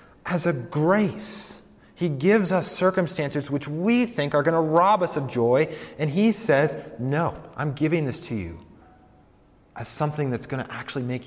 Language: English